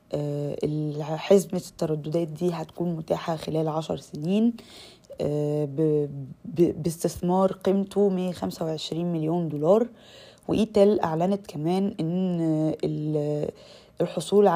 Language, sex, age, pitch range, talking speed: Arabic, female, 20-39, 150-175 Hz, 75 wpm